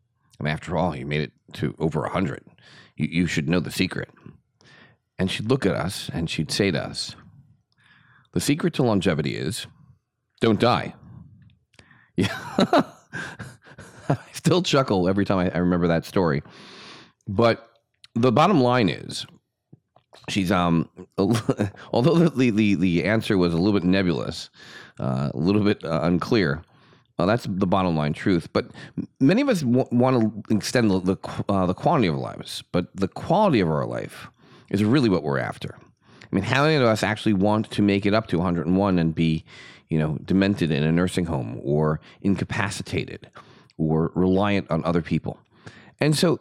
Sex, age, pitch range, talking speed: male, 30-49, 85-110 Hz, 170 wpm